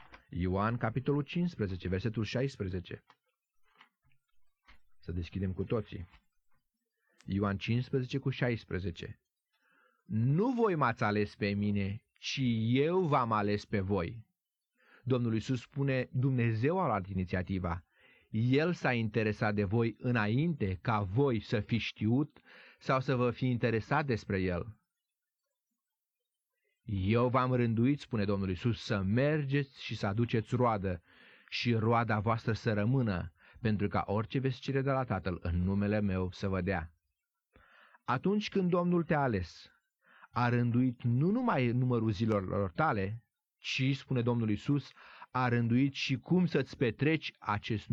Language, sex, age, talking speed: Romanian, male, 30-49, 130 wpm